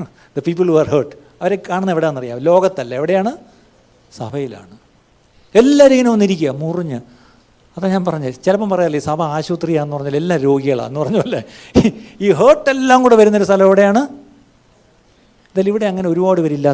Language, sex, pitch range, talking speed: Malayalam, male, 140-205 Hz, 140 wpm